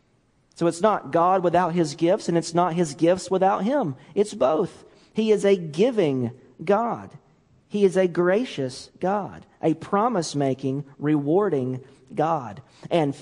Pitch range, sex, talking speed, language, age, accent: 130-185 Hz, male, 140 wpm, English, 40-59, American